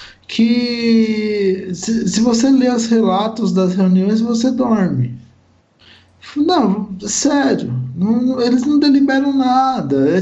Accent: Brazilian